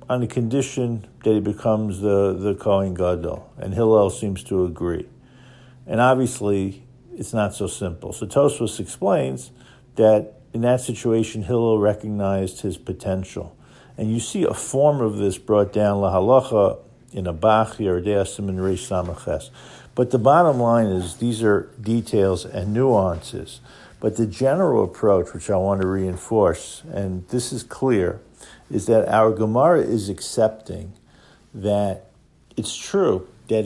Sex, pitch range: male, 100-125 Hz